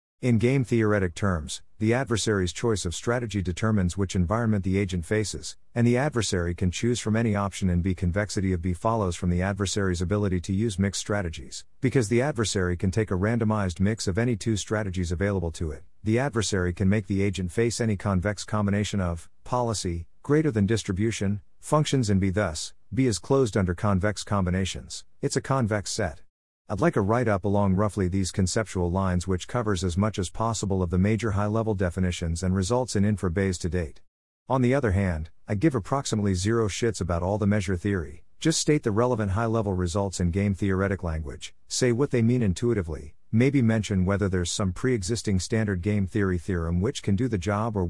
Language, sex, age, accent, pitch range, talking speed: English, male, 50-69, American, 90-115 Hz, 190 wpm